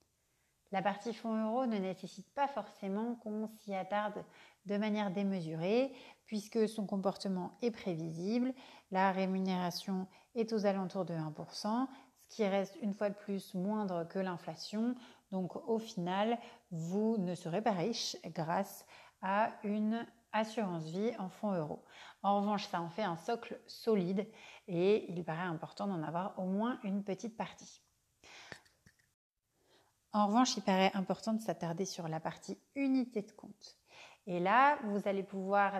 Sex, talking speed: female, 150 wpm